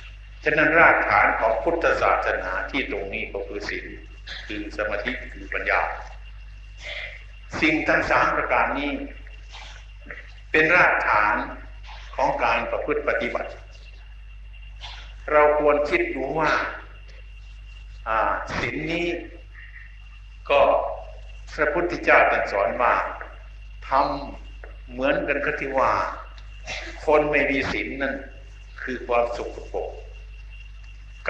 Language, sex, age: Thai, male, 60-79